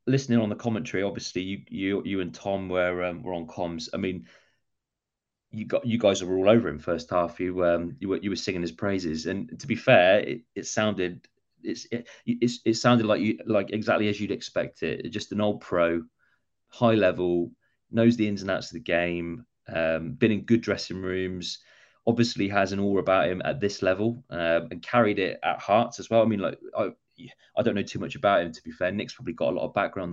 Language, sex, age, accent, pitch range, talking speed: English, male, 30-49, British, 90-115 Hz, 225 wpm